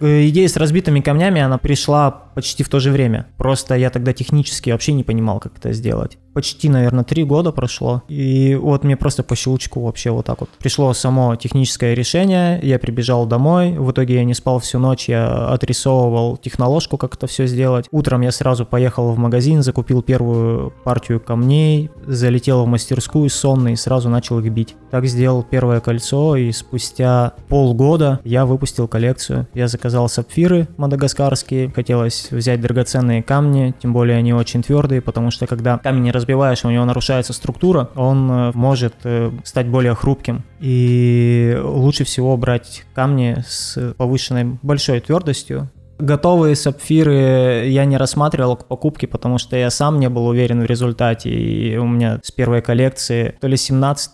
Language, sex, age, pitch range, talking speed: Russian, male, 20-39, 120-135 Hz, 165 wpm